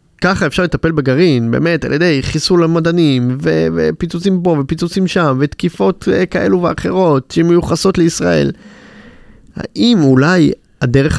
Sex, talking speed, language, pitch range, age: male, 125 wpm, Hebrew, 130-170 Hz, 30-49